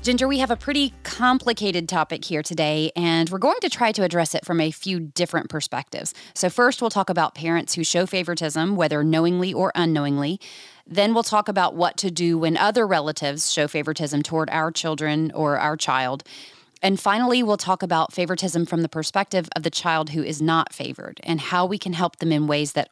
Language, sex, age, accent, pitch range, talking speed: English, female, 30-49, American, 155-190 Hz, 205 wpm